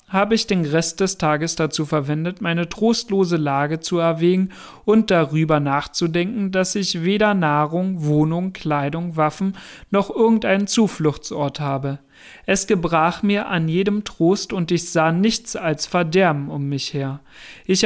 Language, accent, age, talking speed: German, German, 40-59, 145 wpm